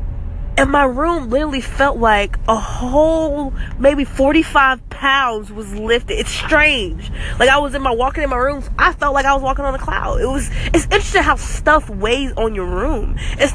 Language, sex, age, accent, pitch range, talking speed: English, female, 20-39, American, 225-295 Hz, 195 wpm